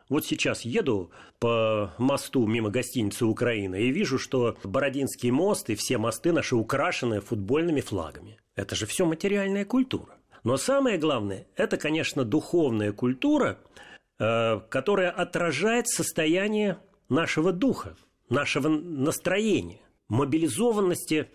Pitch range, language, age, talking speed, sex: 120-190 Hz, Russian, 40-59, 110 wpm, male